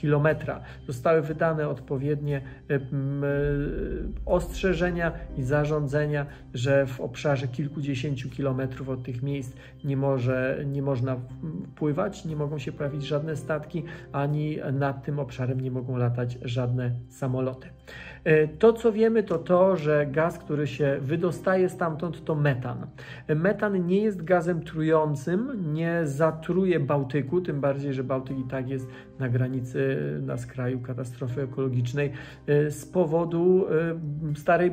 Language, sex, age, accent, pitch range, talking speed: Polish, male, 40-59, native, 130-165 Hz, 125 wpm